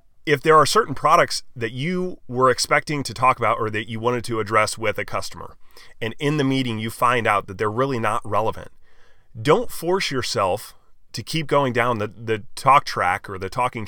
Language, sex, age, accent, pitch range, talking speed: English, male, 30-49, American, 100-130 Hz, 205 wpm